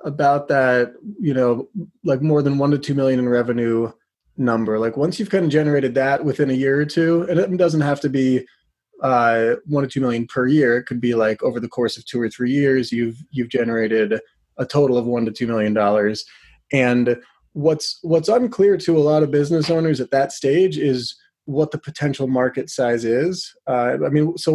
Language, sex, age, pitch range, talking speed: English, male, 30-49, 120-155 Hz, 210 wpm